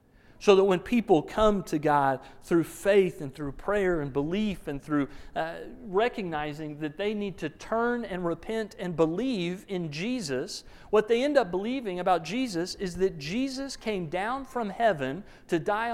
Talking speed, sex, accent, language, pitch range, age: 170 wpm, male, American, English, 175-230 Hz, 40-59